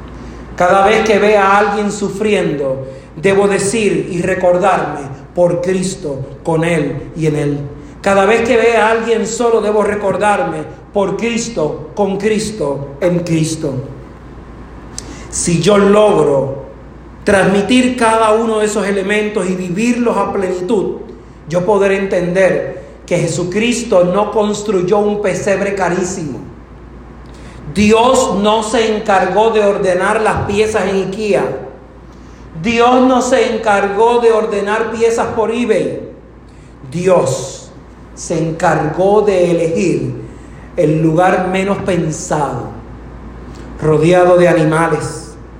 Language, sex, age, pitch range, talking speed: Spanish, male, 40-59, 160-210 Hz, 115 wpm